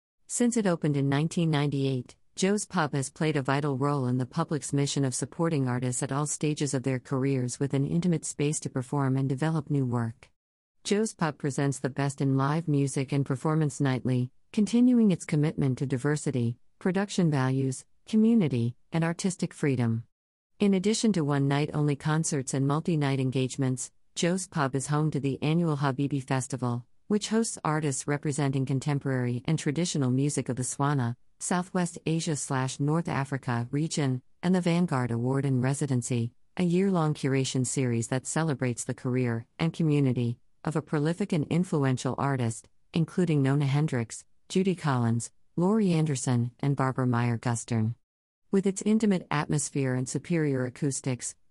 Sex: female